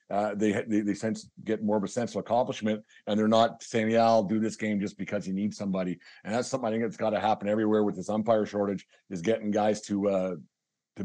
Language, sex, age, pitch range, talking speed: English, male, 50-69, 105-120 Hz, 255 wpm